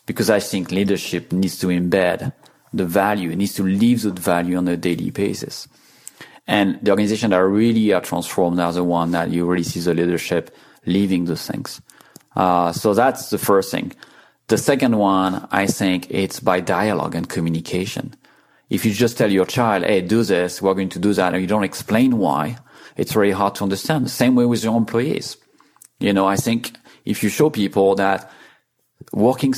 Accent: French